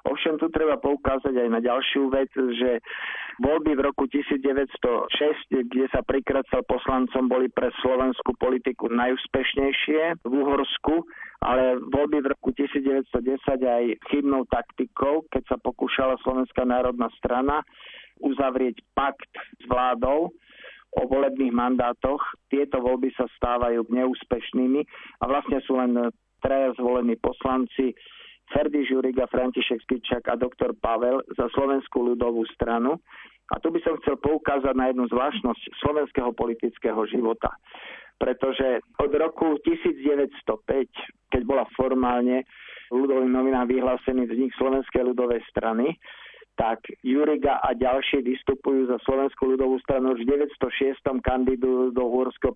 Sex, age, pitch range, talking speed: male, 50-69, 125-140 Hz, 125 wpm